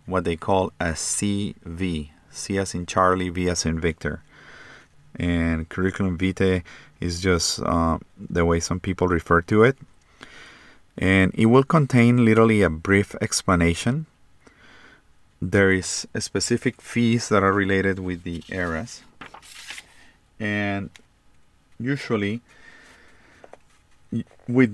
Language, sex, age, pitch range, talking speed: English, male, 30-49, 90-105 Hz, 115 wpm